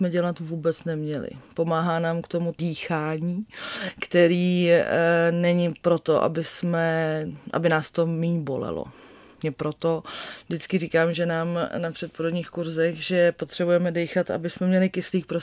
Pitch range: 165-185 Hz